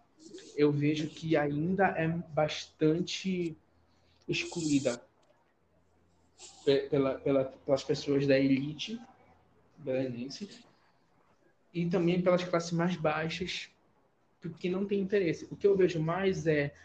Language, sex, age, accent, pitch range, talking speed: Portuguese, male, 20-39, Brazilian, 140-190 Hz, 95 wpm